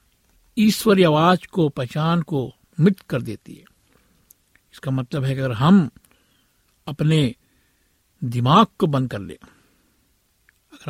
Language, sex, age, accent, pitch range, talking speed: Hindi, male, 60-79, native, 125-175 Hz, 120 wpm